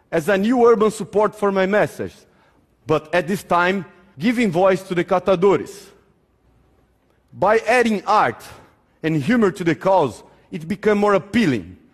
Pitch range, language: 160-200 Hz, English